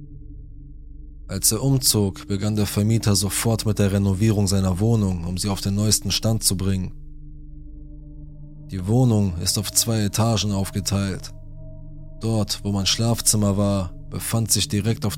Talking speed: 140 wpm